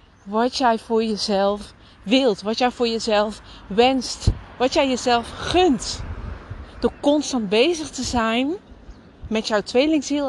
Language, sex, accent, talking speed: Dutch, female, Dutch, 130 wpm